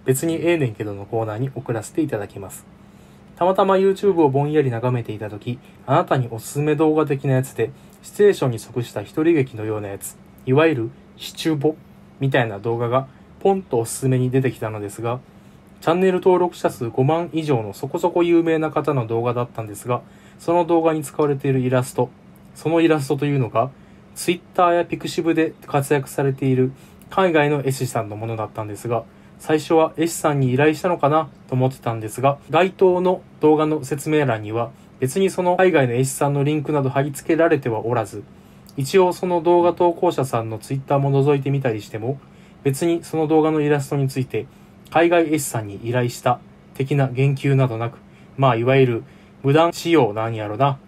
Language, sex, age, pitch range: Japanese, male, 20-39, 125-160 Hz